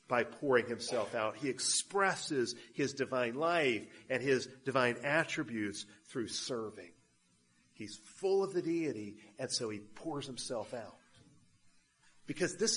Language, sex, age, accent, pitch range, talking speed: English, male, 40-59, American, 145-205 Hz, 130 wpm